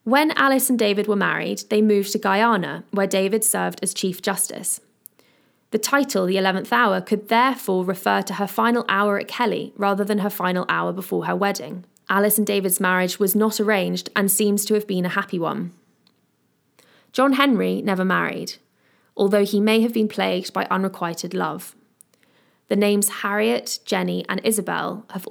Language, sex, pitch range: English, female, 185-215 Hz